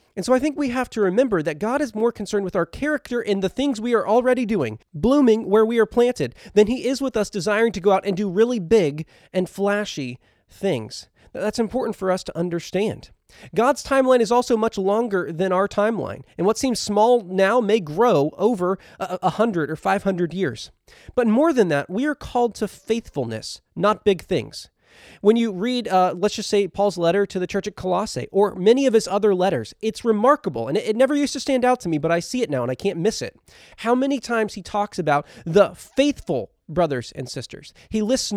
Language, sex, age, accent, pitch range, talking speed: English, male, 30-49, American, 180-235 Hz, 215 wpm